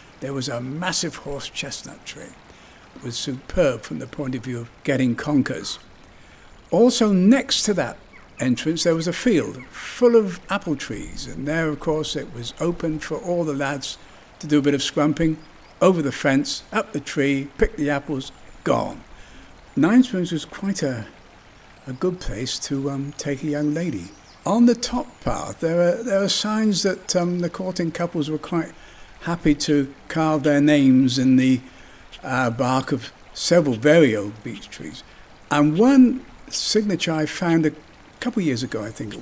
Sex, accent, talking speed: male, British, 175 wpm